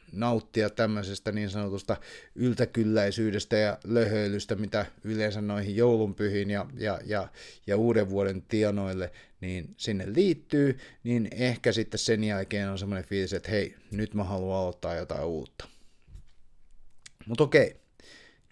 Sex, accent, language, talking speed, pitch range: male, native, Finnish, 130 wpm, 105-135 Hz